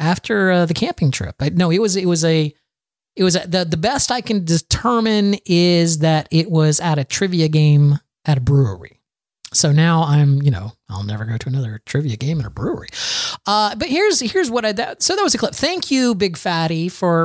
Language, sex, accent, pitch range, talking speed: English, male, American, 140-190 Hz, 215 wpm